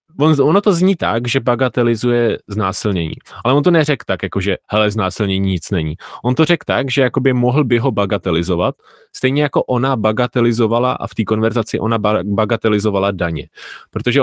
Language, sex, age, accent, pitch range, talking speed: Czech, male, 20-39, native, 105-130 Hz, 170 wpm